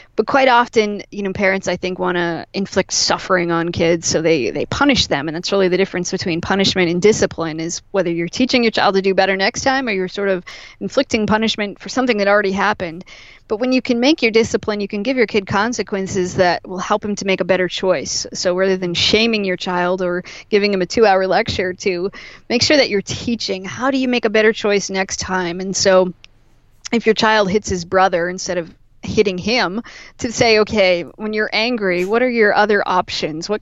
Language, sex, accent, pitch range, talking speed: English, female, American, 185-215 Hz, 220 wpm